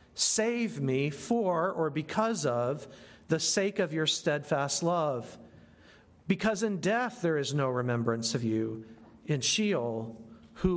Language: English